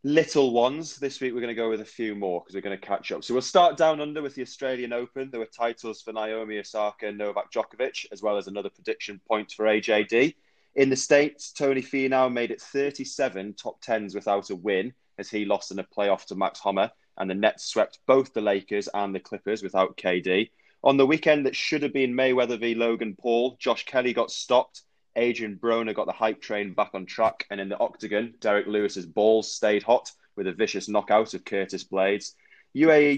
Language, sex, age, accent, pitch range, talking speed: English, male, 20-39, British, 105-130 Hz, 215 wpm